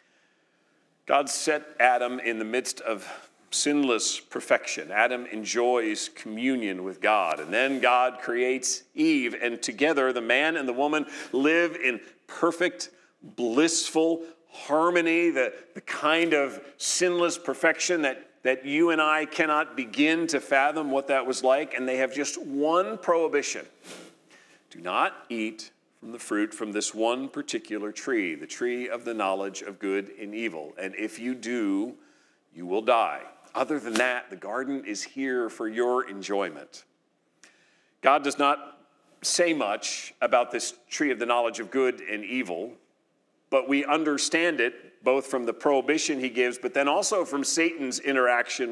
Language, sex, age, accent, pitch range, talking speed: English, male, 40-59, American, 120-160 Hz, 155 wpm